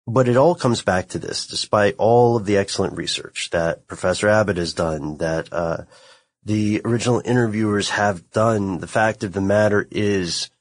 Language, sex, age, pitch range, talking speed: English, male, 30-49, 90-105 Hz, 175 wpm